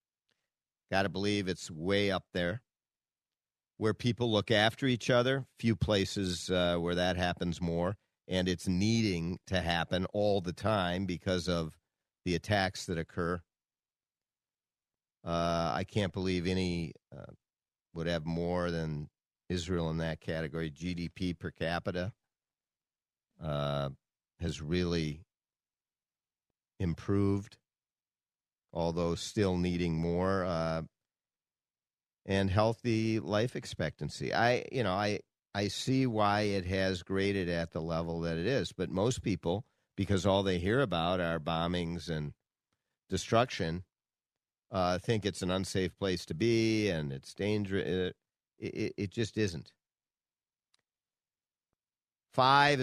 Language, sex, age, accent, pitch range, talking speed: English, male, 50-69, American, 85-105 Hz, 125 wpm